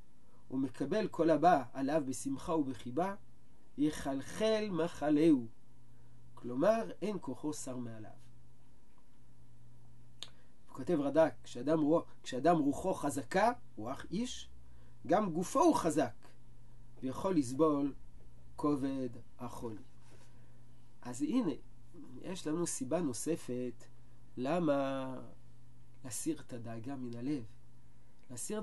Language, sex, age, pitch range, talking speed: Hebrew, male, 40-59, 120-160 Hz, 90 wpm